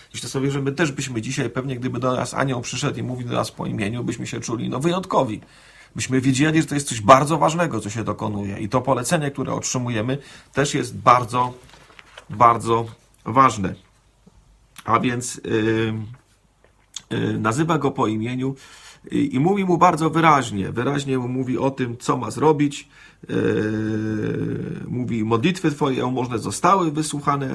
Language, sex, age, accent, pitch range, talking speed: Polish, male, 40-59, native, 115-145 Hz, 155 wpm